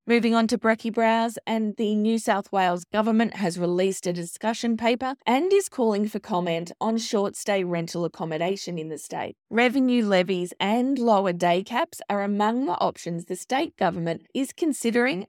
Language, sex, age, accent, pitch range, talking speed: English, female, 20-39, Australian, 185-240 Hz, 170 wpm